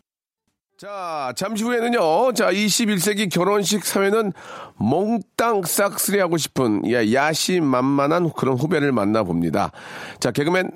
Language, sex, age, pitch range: Korean, male, 40-59, 125-175 Hz